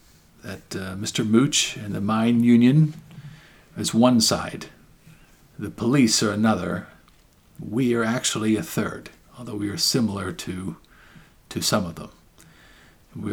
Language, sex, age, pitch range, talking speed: English, male, 50-69, 100-125 Hz, 135 wpm